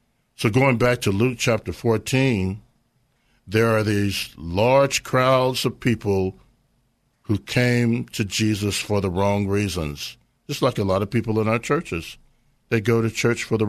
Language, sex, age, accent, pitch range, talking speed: English, male, 50-69, American, 110-125 Hz, 160 wpm